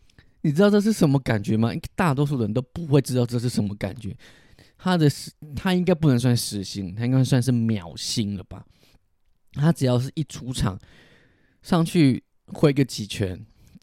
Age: 20-39